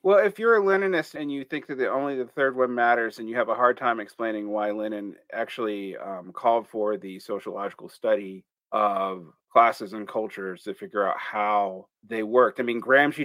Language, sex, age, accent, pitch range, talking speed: English, male, 30-49, American, 125-175 Hz, 200 wpm